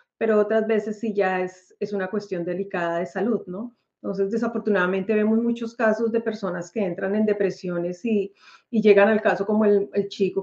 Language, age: Spanish, 40-59